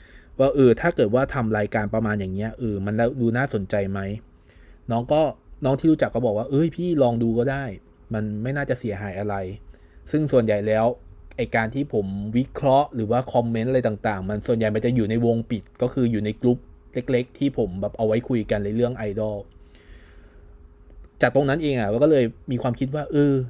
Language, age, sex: Thai, 20-39, male